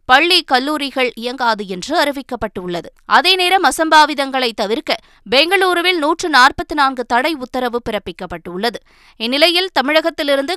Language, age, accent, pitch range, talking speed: Tamil, 20-39, native, 225-305 Hz, 85 wpm